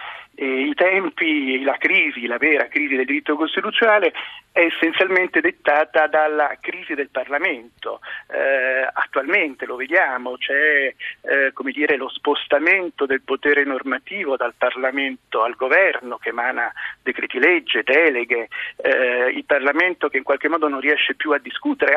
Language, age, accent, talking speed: Italian, 40-59, native, 135 wpm